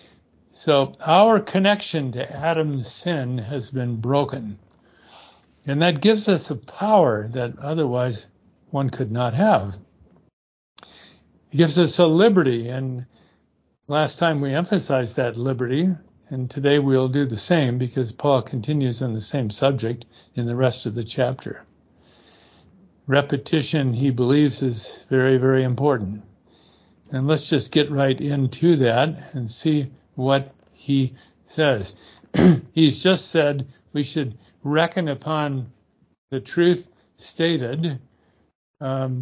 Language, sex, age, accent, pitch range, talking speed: English, male, 60-79, American, 120-150 Hz, 125 wpm